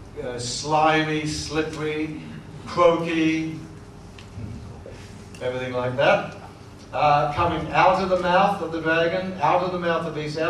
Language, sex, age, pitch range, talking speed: English, male, 60-79, 145-180 Hz, 135 wpm